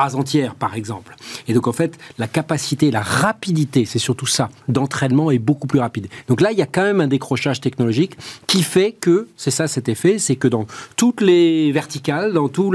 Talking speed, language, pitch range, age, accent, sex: 205 wpm, French, 115-155 Hz, 40-59, French, male